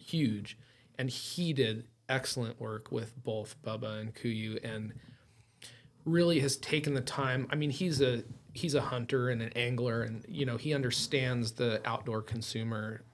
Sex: male